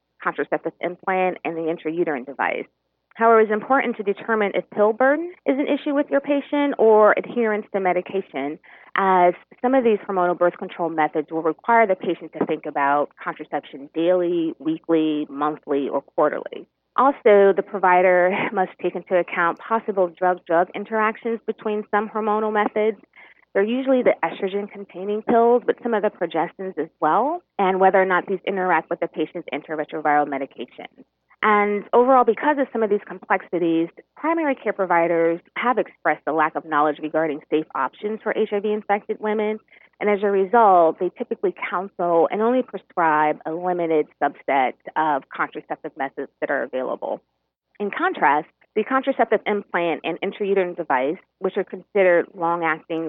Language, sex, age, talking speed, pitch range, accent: English, female, 30-49, 155 wpm, 165-215 Hz, American